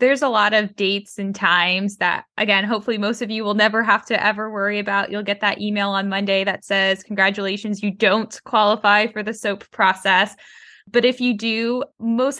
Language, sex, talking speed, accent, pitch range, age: English, female, 200 wpm, American, 190-220 Hz, 10-29